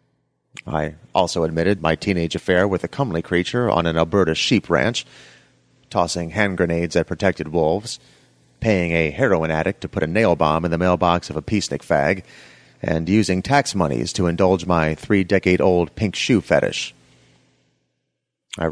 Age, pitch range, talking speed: 30-49, 80-105 Hz, 155 wpm